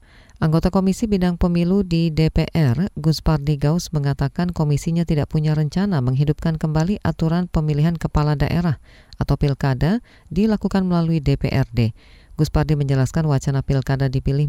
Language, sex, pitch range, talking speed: Indonesian, female, 135-165 Hz, 120 wpm